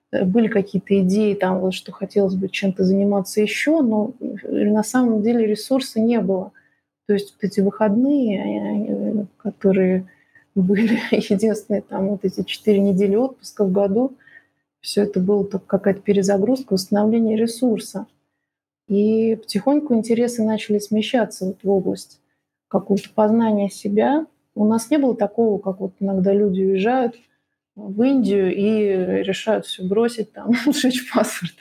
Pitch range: 195-225 Hz